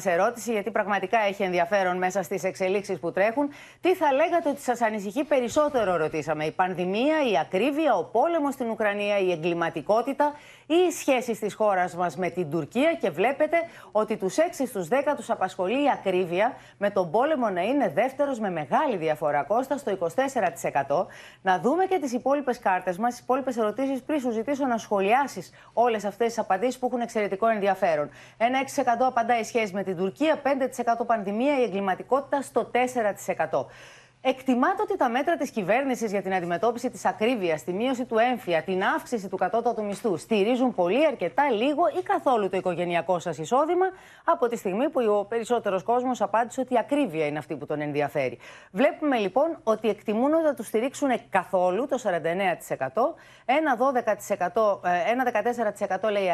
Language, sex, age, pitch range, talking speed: Greek, female, 30-49, 190-270 Hz, 165 wpm